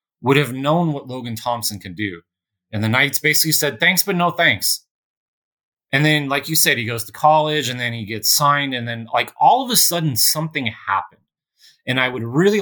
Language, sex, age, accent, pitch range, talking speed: English, male, 30-49, American, 110-145 Hz, 210 wpm